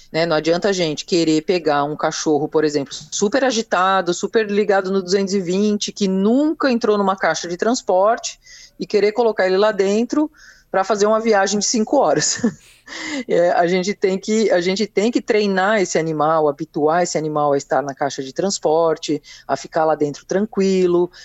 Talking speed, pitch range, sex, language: 180 wpm, 150-200 Hz, female, Portuguese